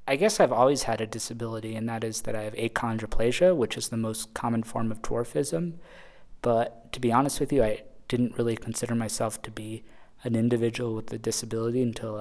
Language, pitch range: English, 110-120 Hz